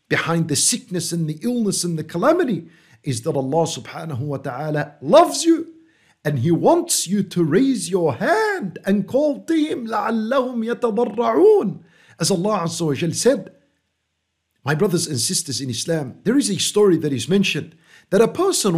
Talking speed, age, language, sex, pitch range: 160 wpm, 50-69, English, male, 160-255 Hz